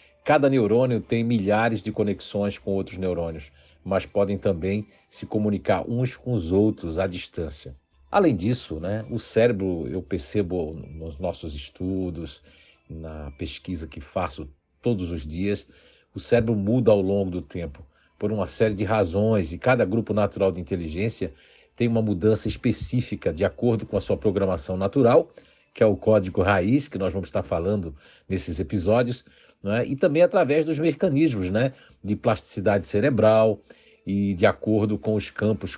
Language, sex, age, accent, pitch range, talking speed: Portuguese, male, 50-69, Brazilian, 90-115 Hz, 160 wpm